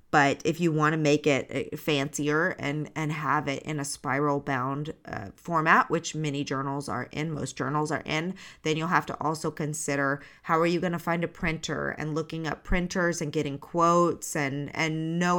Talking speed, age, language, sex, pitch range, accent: 200 wpm, 30-49, English, female, 145-170 Hz, American